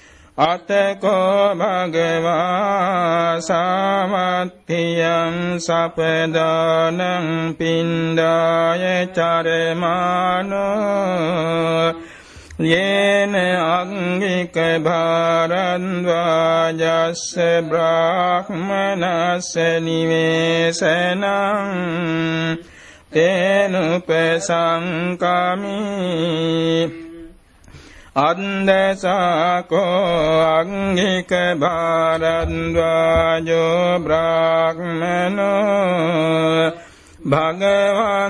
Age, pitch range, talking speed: 60-79, 165-185 Hz, 35 wpm